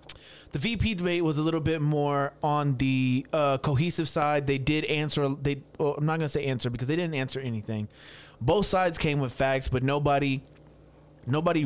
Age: 20-39